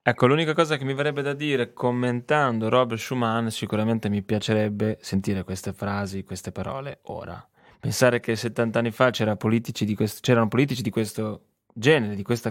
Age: 20-39